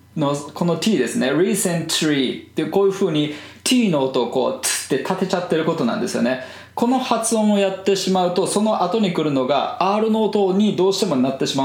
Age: 20-39